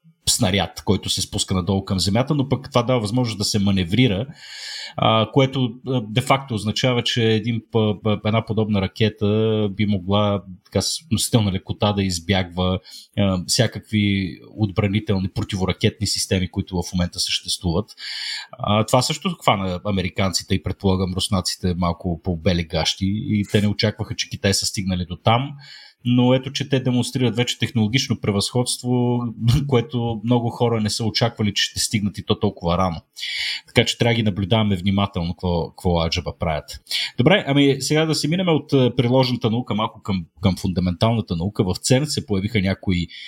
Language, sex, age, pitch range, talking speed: Bulgarian, male, 30-49, 95-120 Hz, 150 wpm